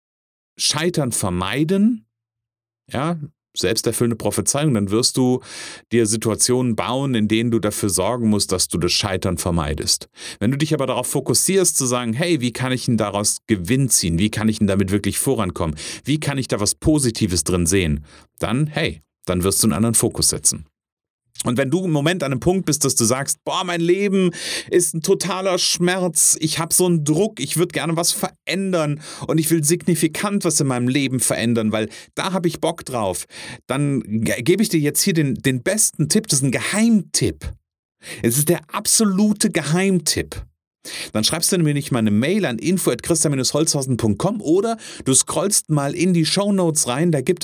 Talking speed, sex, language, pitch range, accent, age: 185 wpm, male, German, 110-170 Hz, German, 40-59